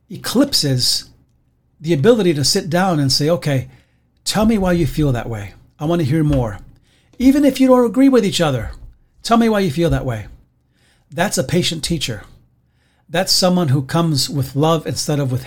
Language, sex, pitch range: English, male, 125-170 Hz